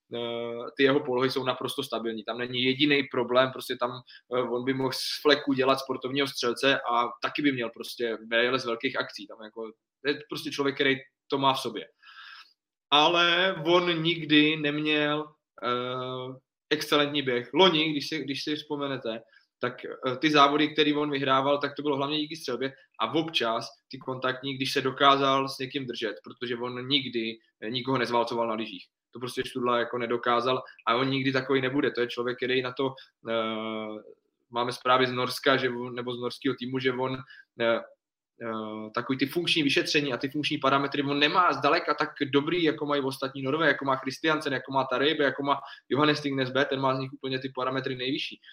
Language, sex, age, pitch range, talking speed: Czech, male, 20-39, 125-150 Hz, 180 wpm